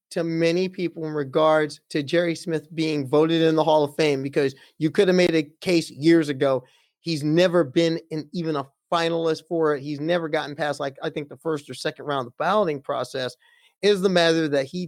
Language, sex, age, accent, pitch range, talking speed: English, male, 30-49, American, 145-170 Hz, 220 wpm